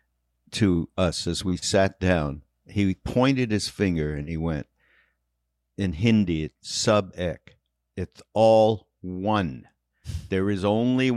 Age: 60-79